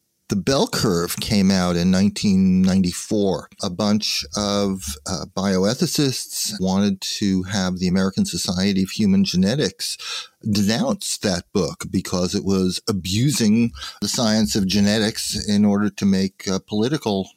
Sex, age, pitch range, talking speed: male, 50-69, 100-135 Hz, 130 wpm